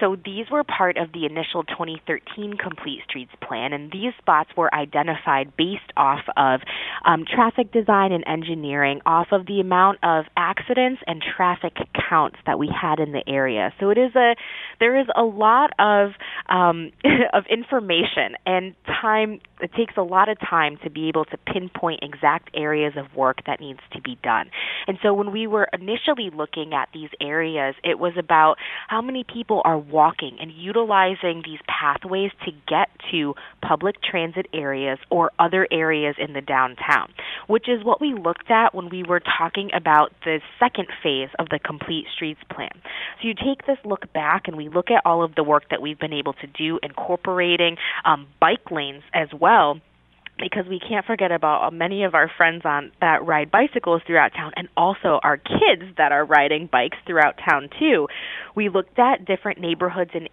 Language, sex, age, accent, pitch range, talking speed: English, female, 20-39, American, 155-200 Hz, 185 wpm